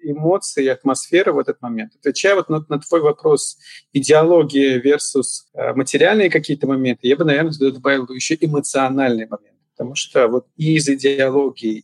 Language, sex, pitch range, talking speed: Russian, male, 130-155 Hz, 155 wpm